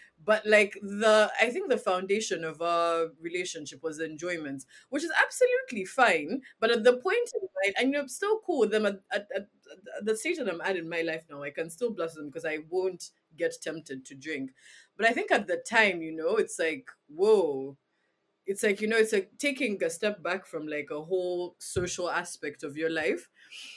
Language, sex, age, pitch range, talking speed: English, female, 20-39, 165-220 Hz, 215 wpm